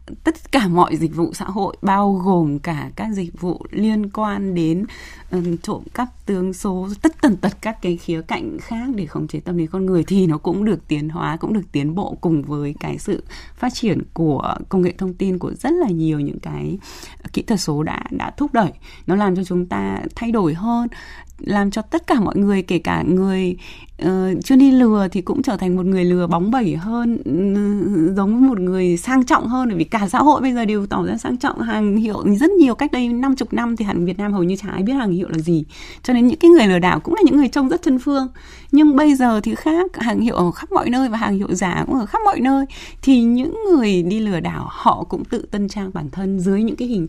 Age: 20-39